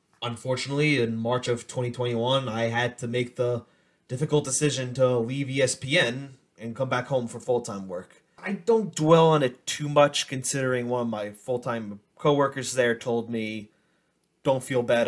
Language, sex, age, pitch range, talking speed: English, male, 20-39, 115-150 Hz, 165 wpm